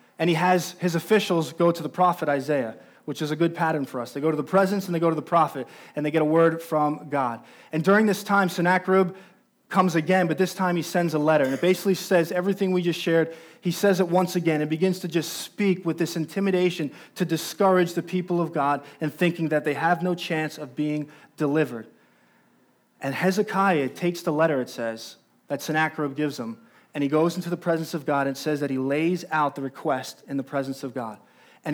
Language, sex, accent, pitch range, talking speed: English, male, American, 150-180 Hz, 225 wpm